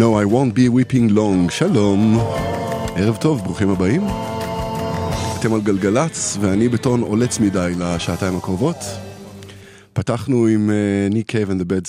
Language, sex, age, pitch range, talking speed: Hebrew, male, 20-39, 90-115 Hz, 125 wpm